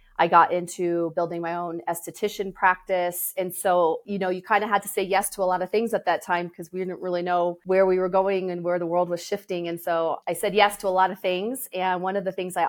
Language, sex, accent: English, female, American